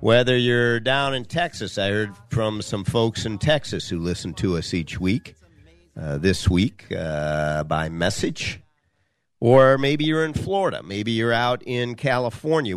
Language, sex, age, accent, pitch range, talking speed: English, male, 50-69, American, 100-150 Hz, 160 wpm